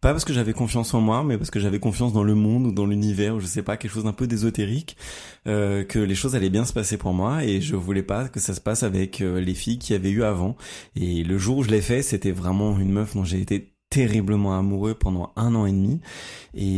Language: French